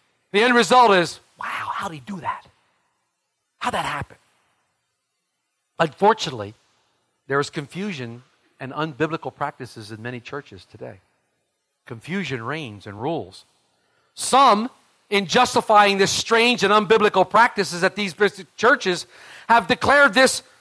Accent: American